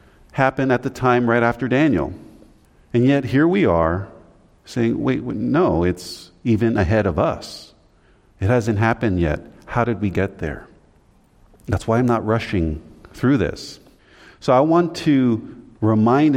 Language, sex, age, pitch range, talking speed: English, male, 40-59, 90-120 Hz, 155 wpm